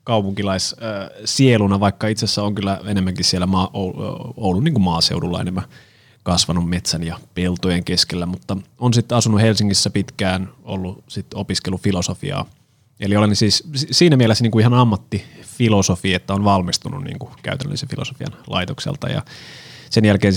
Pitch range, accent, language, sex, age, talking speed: 95-125 Hz, native, Finnish, male, 30-49, 140 wpm